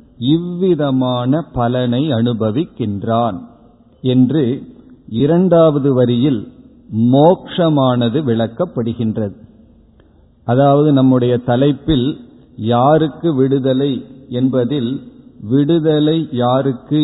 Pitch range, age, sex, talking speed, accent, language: 120-145 Hz, 50-69, male, 55 wpm, native, Tamil